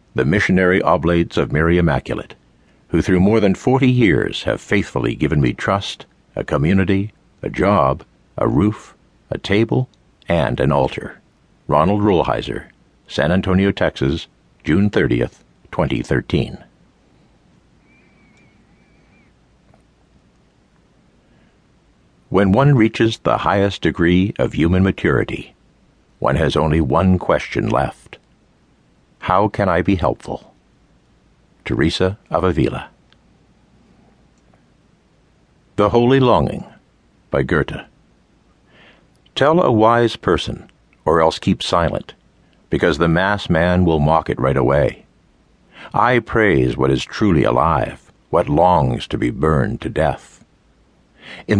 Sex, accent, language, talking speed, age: male, American, English, 110 wpm, 60-79